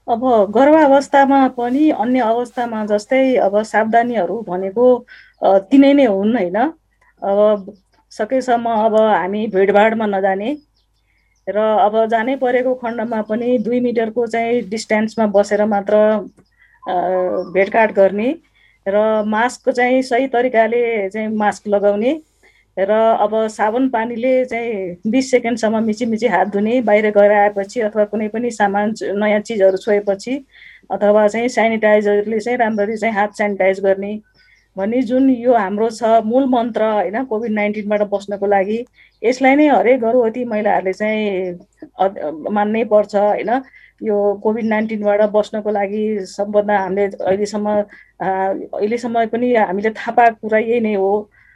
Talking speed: 115 wpm